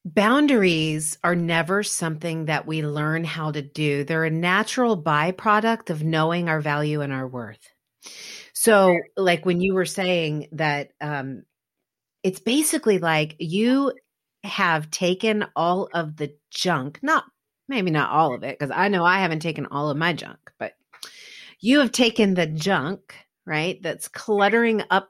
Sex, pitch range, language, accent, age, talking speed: female, 160-215 Hz, English, American, 40-59, 155 wpm